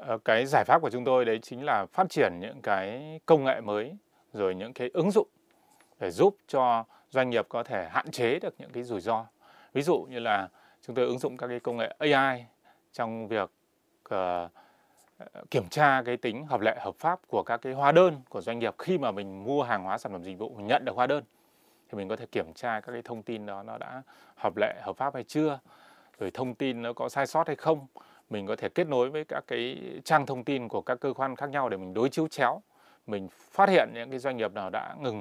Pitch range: 110-140 Hz